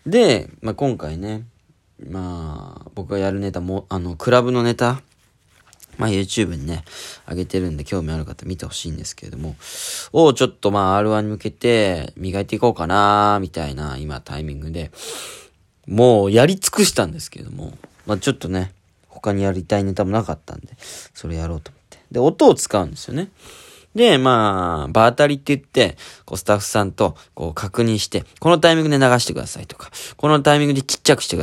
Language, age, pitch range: Japanese, 20-39, 90-135 Hz